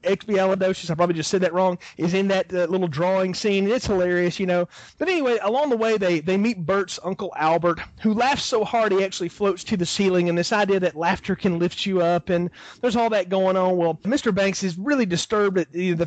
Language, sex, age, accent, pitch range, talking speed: English, male, 30-49, American, 175-210 Hz, 230 wpm